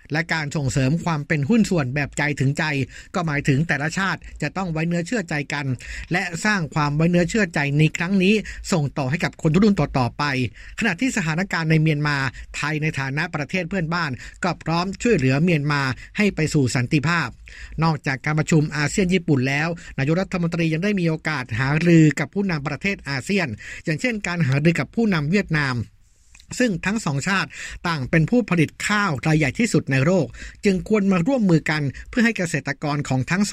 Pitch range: 145-185 Hz